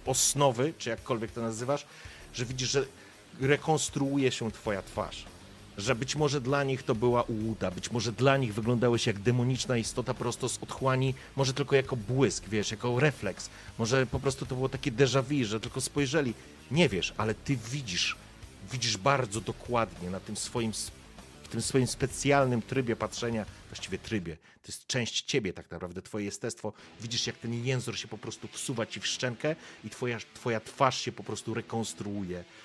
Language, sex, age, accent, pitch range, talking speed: Polish, male, 40-59, native, 105-130 Hz, 175 wpm